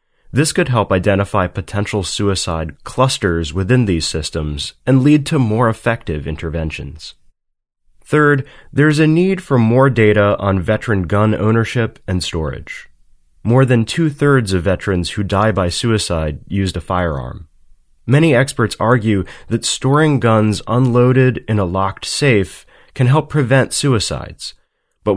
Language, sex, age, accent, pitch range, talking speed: English, male, 30-49, American, 85-125 Hz, 135 wpm